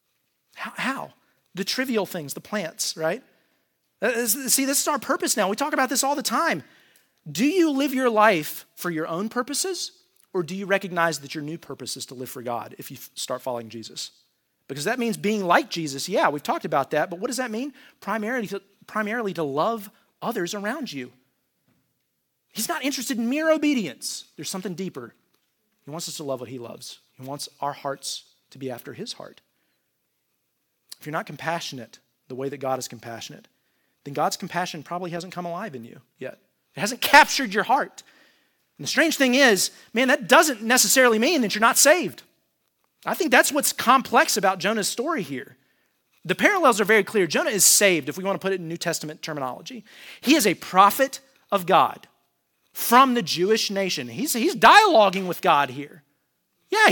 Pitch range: 160-255 Hz